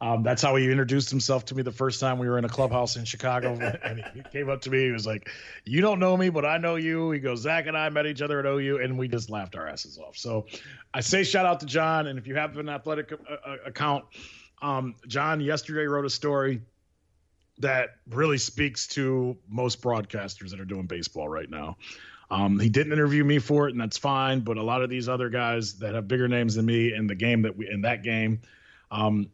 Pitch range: 110-145 Hz